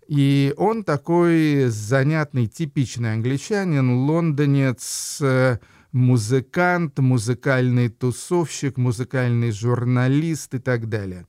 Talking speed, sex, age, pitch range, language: 80 wpm, male, 50-69, 120-150 Hz, Russian